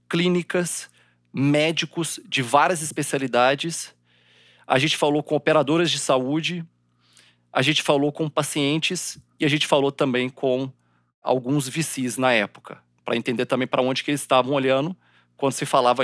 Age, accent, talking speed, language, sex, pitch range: 40-59, Brazilian, 145 wpm, Portuguese, male, 125-155 Hz